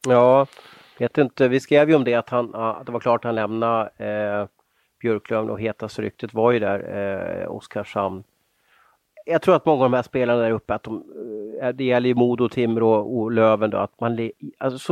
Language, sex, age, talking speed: Swedish, male, 30-49, 195 wpm